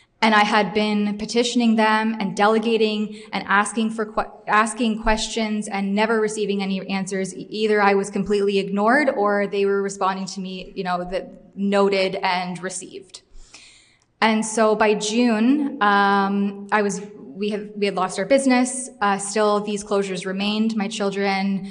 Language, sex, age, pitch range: English, female, 20-39, 195-215 Hz